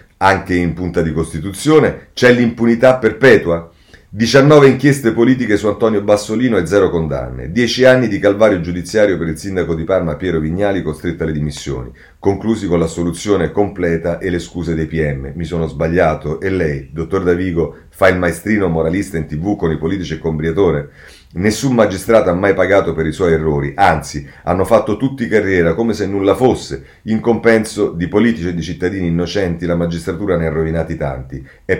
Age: 30-49